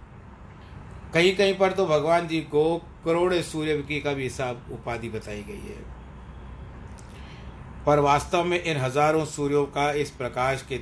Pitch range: 105-135 Hz